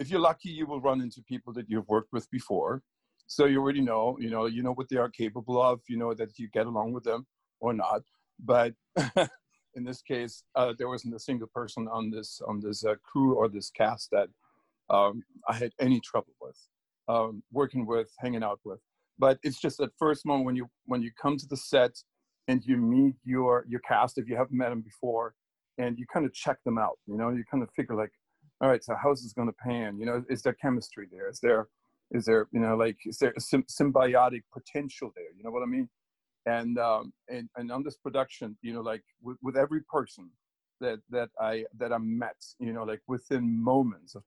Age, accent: 50-69, American